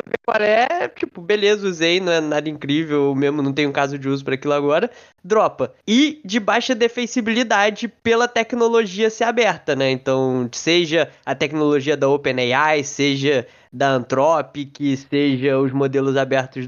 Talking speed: 150 wpm